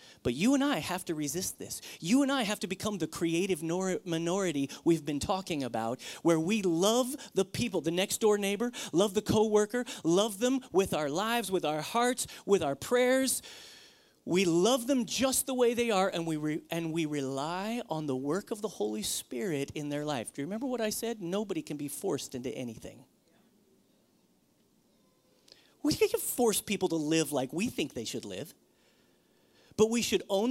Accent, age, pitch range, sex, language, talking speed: American, 40-59, 180-260 Hz, male, English, 190 wpm